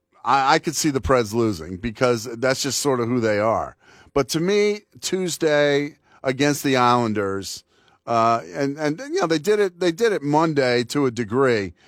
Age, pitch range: 40-59, 115-145 Hz